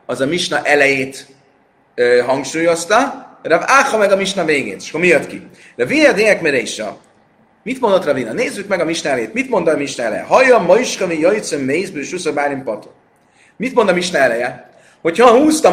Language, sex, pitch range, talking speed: Hungarian, male, 160-205 Hz, 170 wpm